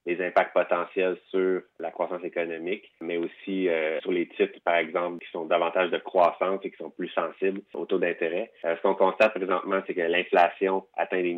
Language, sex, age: French, male, 30-49